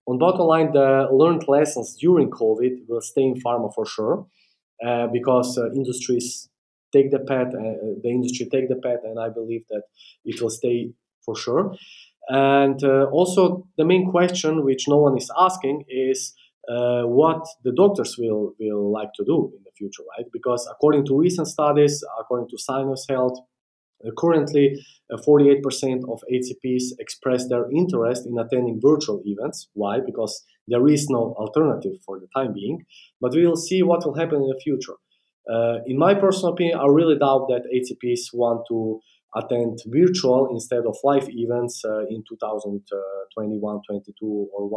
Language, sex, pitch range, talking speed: English, male, 115-140 Hz, 165 wpm